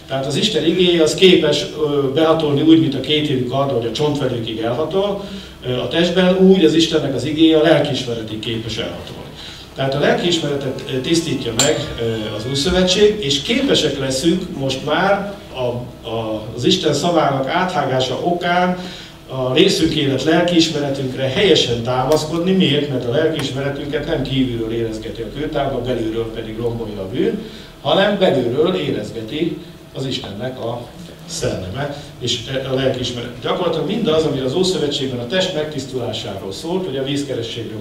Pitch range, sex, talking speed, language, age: 115-160 Hz, male, 140 wpm, English, 60-79